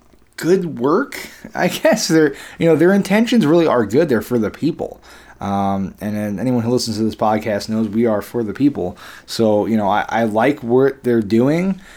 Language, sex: English, male